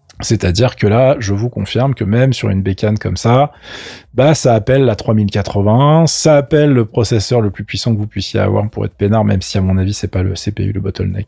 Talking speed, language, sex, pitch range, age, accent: 230 wpm, French, male, 105-140 Hz, 20-39, French